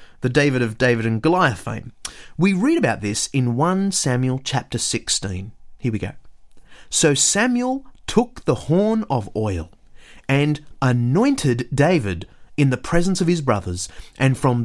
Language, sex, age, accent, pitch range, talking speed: English, male, 30-49, Australian, 125-210 Hz, 150 wpm